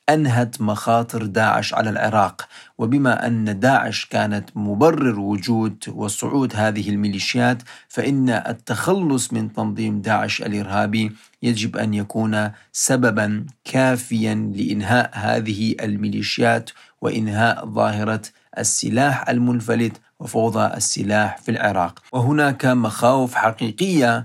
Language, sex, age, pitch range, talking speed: Arabic, male, 40-59, 105-120 Hz, 95 wpm